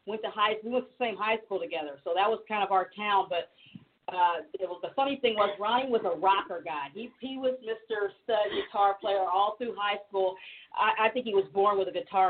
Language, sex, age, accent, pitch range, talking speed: English, female, 40-59, American, 185-225 Hz, 250 wpm